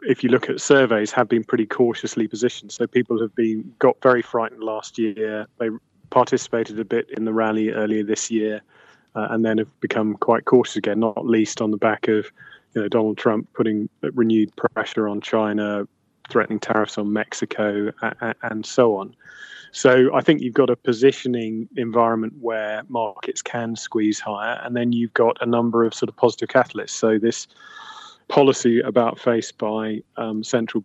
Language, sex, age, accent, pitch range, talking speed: English, male, 30-49, British, 110-120 Hz, 180 wpm